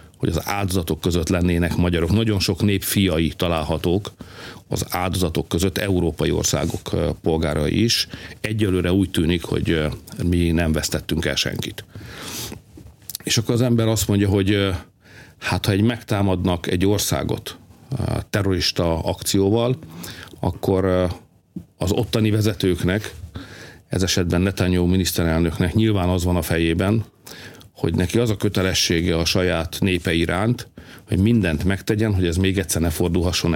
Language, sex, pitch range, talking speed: Hungarian, male, 90-110 Hz, 130 wpm